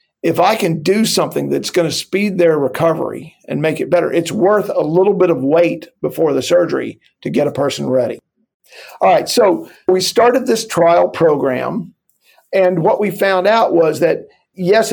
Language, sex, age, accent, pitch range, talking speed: English, male, 50-69, American, 150-185 Hz, 185 wpm